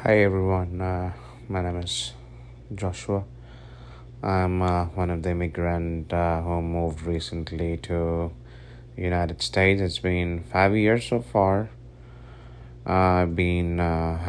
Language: English